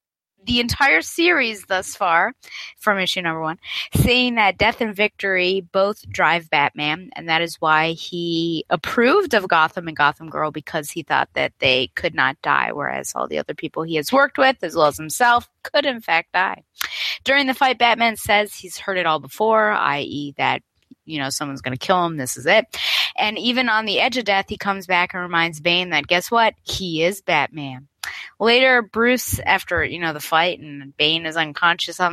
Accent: American